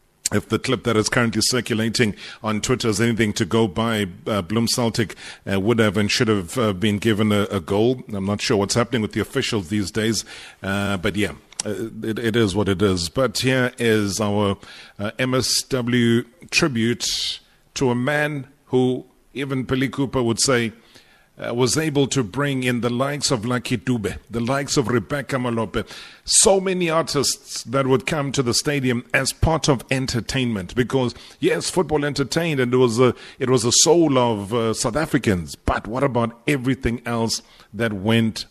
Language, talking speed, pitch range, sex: English, 180 wpm, 105-125 Hz, male